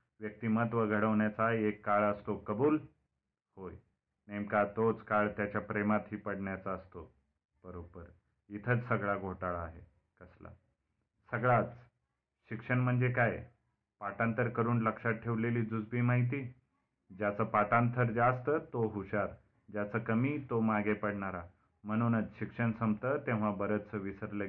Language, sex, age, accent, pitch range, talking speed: Marathi, male, 40-59, native, 100-120 Hz, 115 wpm